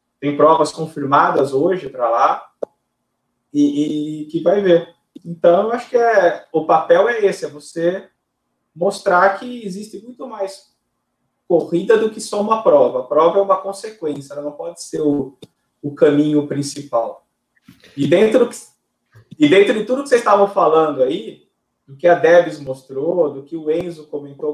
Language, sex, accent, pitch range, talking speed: Portuguese, male, Brazilian, 150-200 Hz, 165 wpm